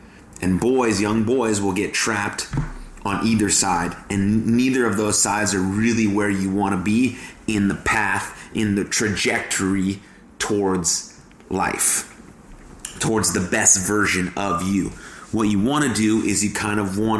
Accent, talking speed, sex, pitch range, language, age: American, 160 wpm, male, 95-110 Hz, English, 30-49